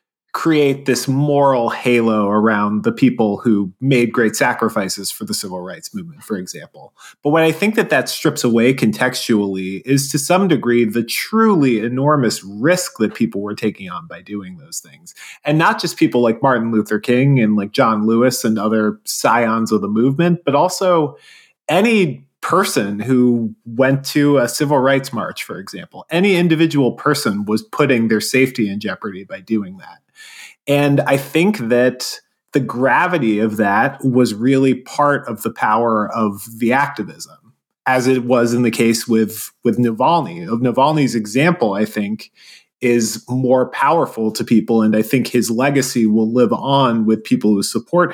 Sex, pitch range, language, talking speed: male, 110-145 Hz, English, 170 wpm